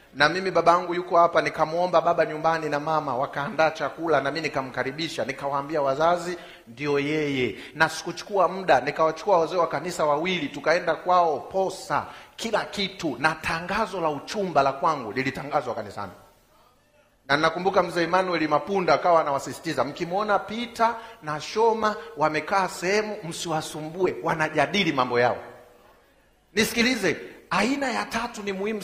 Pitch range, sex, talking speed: 145-195 Hz, male, 130 wpm